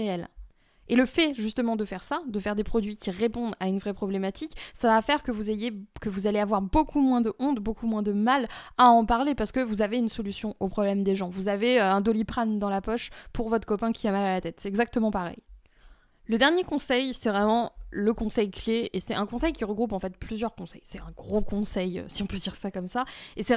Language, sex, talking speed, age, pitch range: French, female, 250 wpm, 20-39, 195-240 Hz